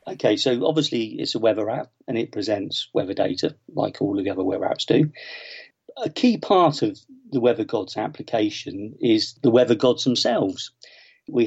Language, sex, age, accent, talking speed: English, male, 50-69, British, 175 wpm